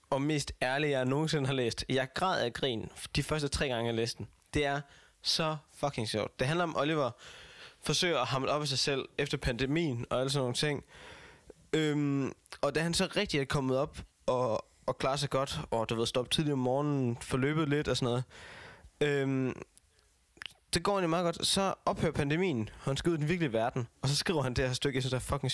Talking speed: 225 wpm